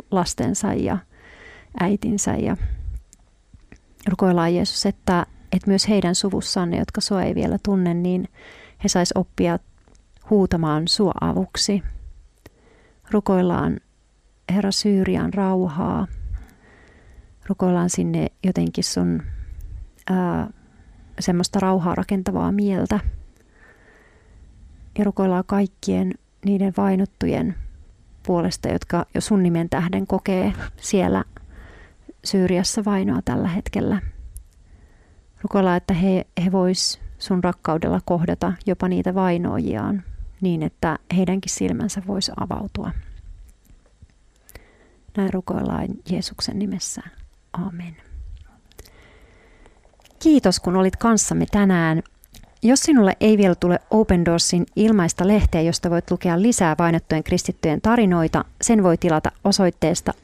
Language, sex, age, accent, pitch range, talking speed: Finnish, female, 40-59, native, 150-200 Hz, 100 wpm